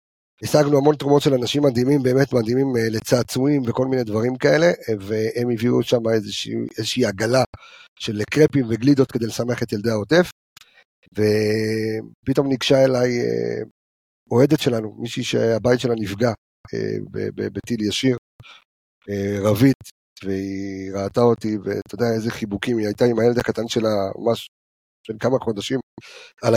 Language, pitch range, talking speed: Hebrew, 110-135 Hz, 130 wpm